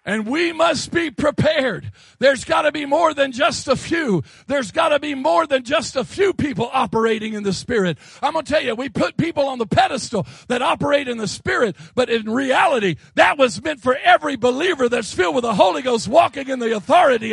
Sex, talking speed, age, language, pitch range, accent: male, 220 wpm, 40-59, English, 240-330 Hz, American